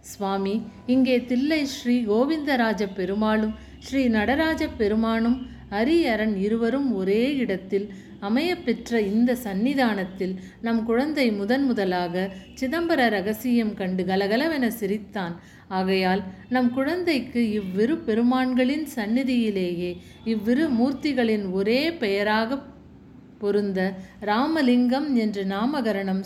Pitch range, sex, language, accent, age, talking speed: 205-260 Hz, female, Tamil, native, 50-69, 90 wpm